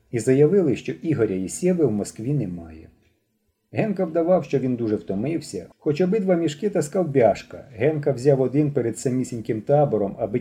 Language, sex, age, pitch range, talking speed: Ukrainian, male, 30-49, 105-160 Hz, 150 wpm